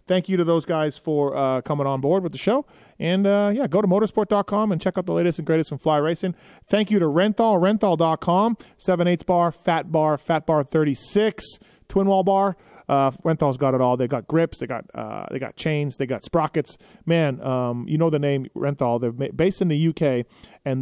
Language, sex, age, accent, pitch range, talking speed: English, male, 30-49, American, 135-180 Hz, 215 wpm